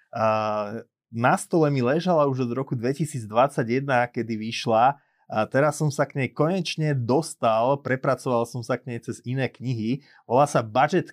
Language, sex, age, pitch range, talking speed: Slovak, male, 30-49, 120-150 Hz, 150 wpm